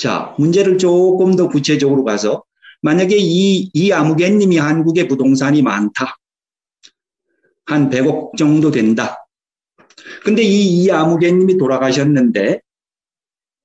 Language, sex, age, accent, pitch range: Korean, male, 40-59, native, 140-195 Hz